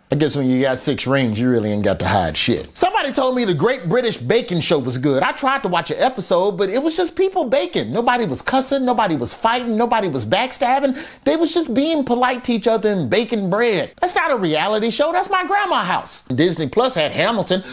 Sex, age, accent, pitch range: male, 30-49, American, 165-250 Hz